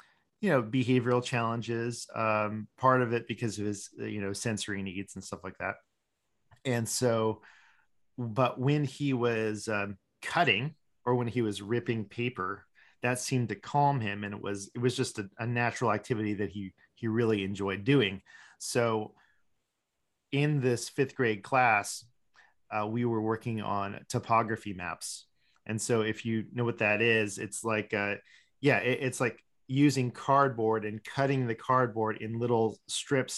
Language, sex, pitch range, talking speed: English, male, 105-125 Hz, 165 wpm